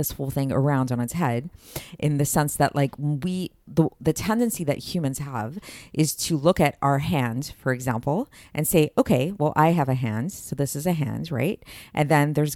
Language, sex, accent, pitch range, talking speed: English, female, American, 140-185 Hz, 210 wpm